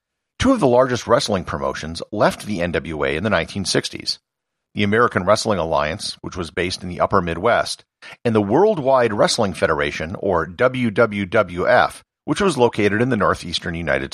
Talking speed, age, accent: 155 wpm, 50-69, American